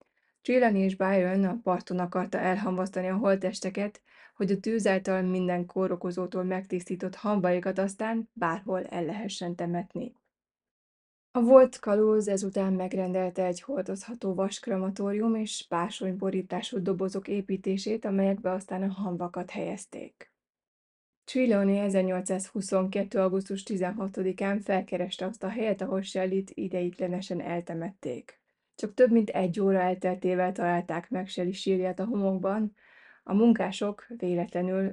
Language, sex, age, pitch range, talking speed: Hungarian, female, 20-39, 185-205 Hz, 115 wpm